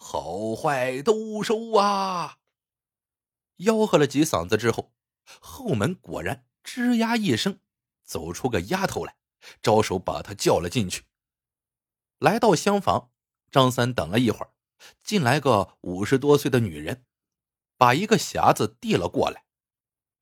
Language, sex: Chinese, male